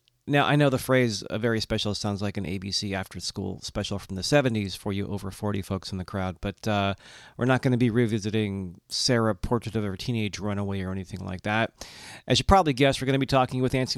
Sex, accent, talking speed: male, American, 235 wpm